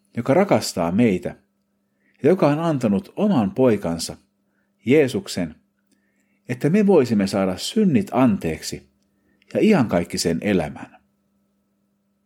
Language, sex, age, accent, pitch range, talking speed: Finnish, male, 50-69, native, 100-125 Hz, 105 wpm